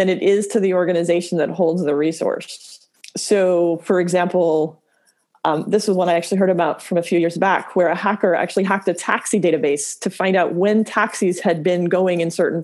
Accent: American